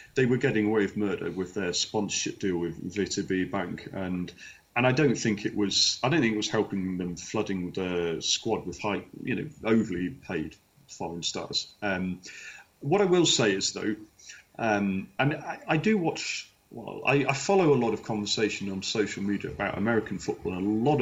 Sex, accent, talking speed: male, British, 200 wpm